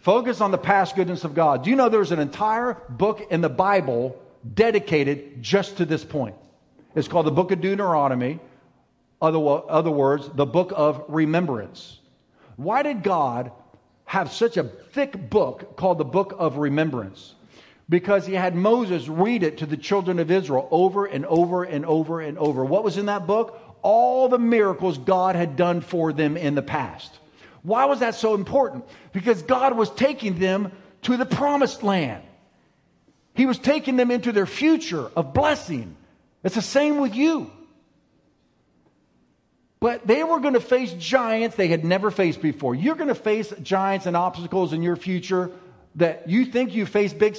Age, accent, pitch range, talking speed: 50-69, American, 160-225 Hz, 175 wpm